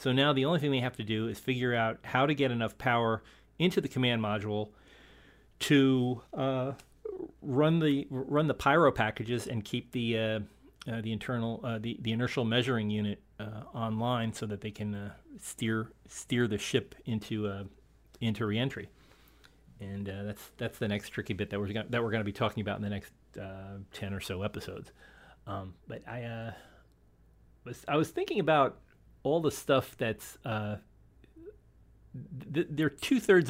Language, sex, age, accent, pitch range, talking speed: English, male, 40-59, American, 105-130 Hz, 180 wpm